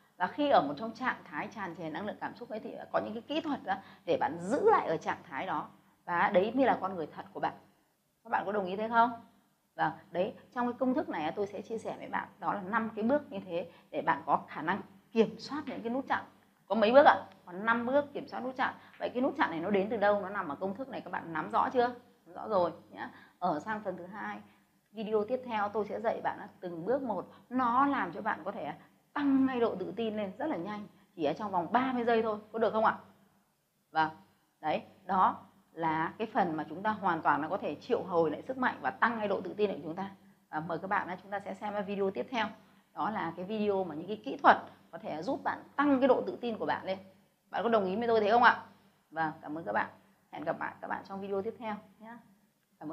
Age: 20-39